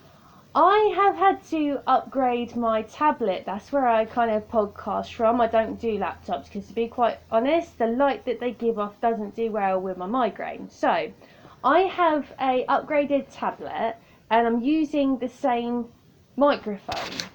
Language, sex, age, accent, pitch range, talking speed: English, female, 20-39, British, 225-285 Hz, 165 wpm